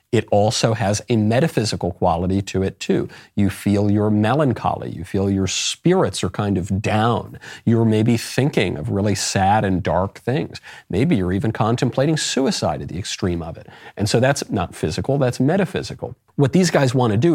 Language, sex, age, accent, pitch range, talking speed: English, male, 40-59, American, 105-150 Hz, 185 wpm